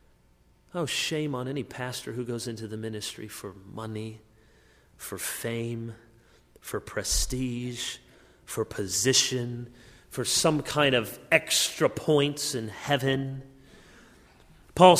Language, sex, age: English, male, 30-49